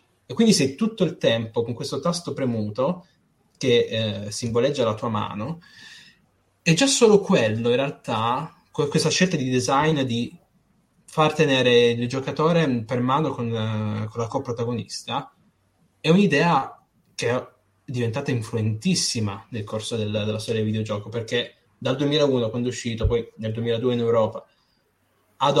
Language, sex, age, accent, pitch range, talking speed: Italian, male, 20-39, native, 115-135 Hz, 150 wpm